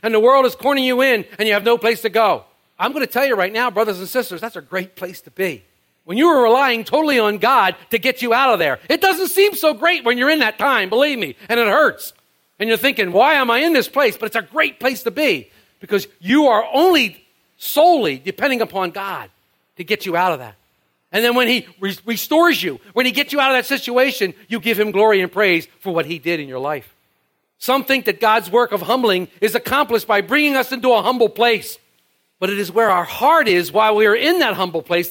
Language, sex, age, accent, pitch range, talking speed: English, male, 50-69, American, 190-270 Hz, 250 wpm